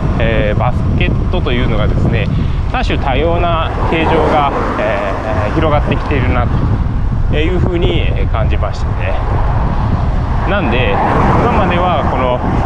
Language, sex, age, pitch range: Japanese, male, 20-39, 95-125 Hz